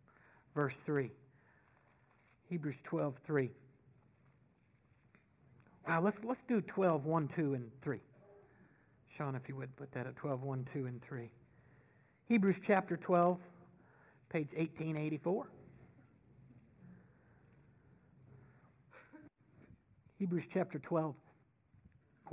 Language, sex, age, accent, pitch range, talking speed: English, male, 60-79, American, 130-205 Hz, 95 wpm